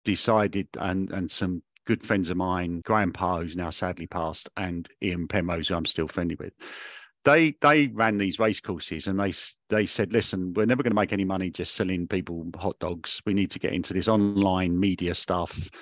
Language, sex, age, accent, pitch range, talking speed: English, male, 50-69, British, 90-105 Hz, 200 wpm